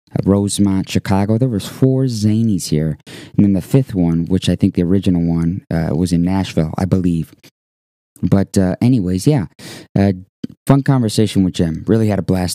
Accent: American